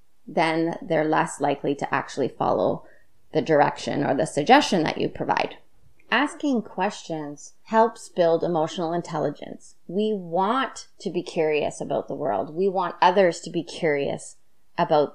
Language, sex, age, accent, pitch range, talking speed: English, female, 30-49, American, 165-215 Hz, 145 wpm